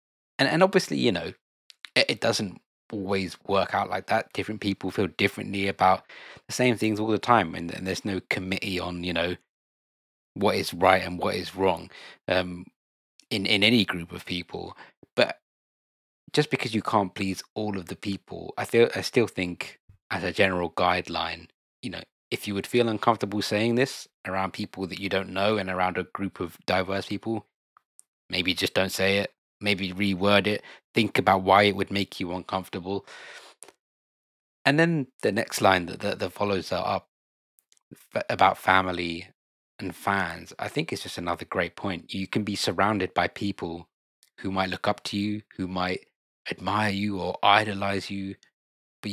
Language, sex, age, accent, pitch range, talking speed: English, male, 20-39, British, 90-105 Hz, 175 wpm